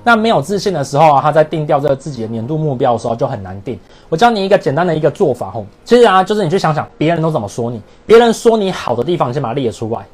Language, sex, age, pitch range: Chinese, male, 30-49, 125-190 Hz